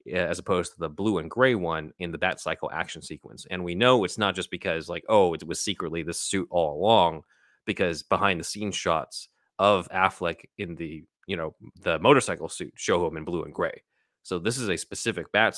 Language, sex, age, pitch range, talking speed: English, male, 30-49, 85-105 Hz, 215 wpm